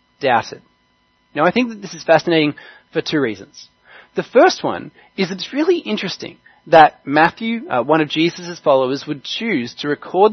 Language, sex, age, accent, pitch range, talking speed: English, male, 20-39, Australian, 145-190 Hz, 170 wpm